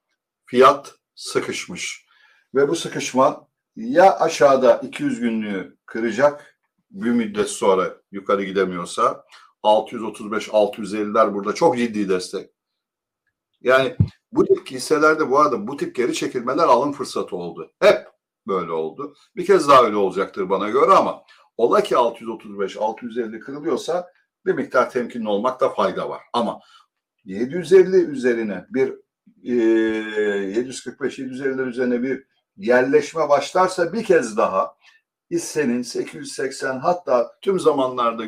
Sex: male